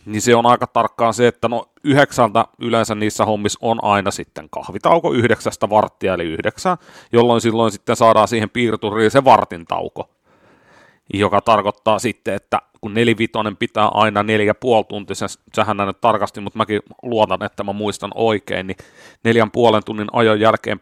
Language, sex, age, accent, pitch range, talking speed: Finnish, male, 30-49, native, 100-115 Hz, 155 wpm